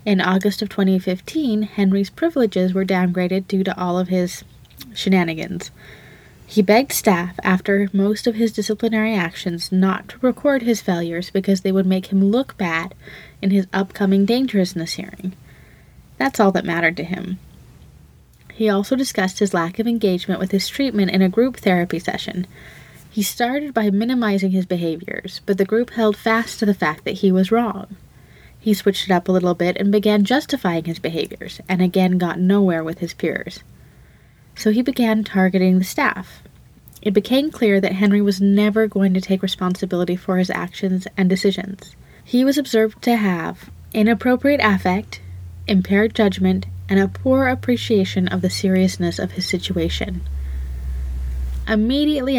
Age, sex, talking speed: 20-39, female, 160 wpm